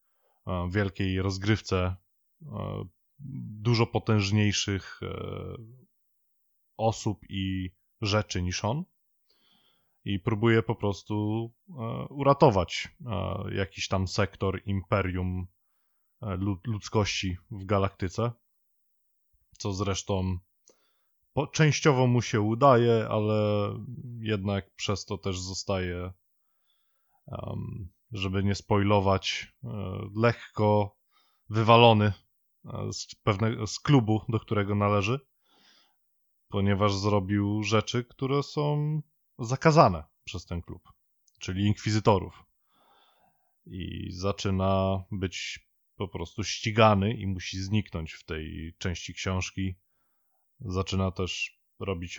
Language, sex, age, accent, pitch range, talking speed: Polish, male, 20-39, native, 95-110 Hz, 80 wpm